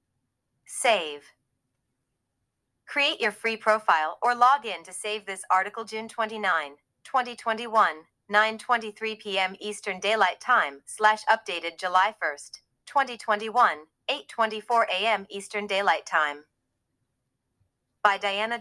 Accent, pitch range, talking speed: American, 155-225 Hz, 95 wpm